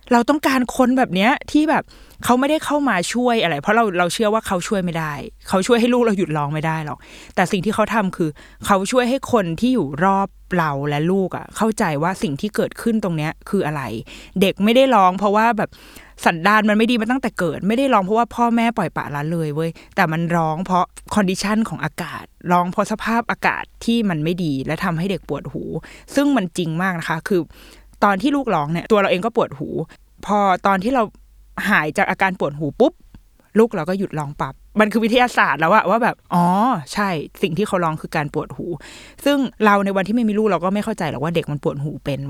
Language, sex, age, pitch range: Thai, female, 20-39, 170-230 Hz